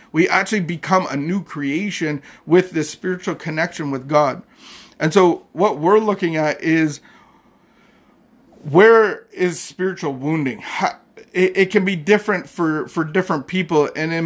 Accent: American